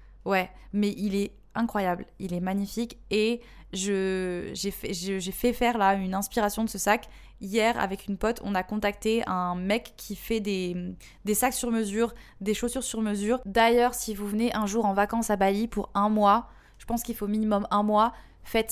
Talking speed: 190 wpm